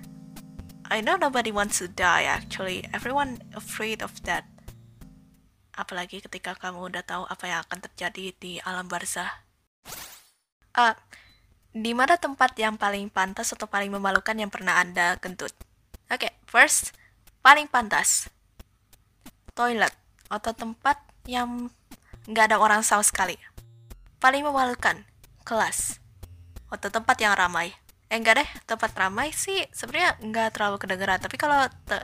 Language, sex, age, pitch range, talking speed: Indonesian, female, 10-29, 185-250 Hz, 135 wpm